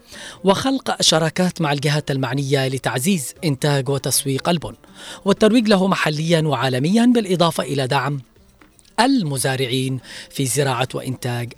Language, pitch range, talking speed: Arabic, 135-190 Hz, 105 wpm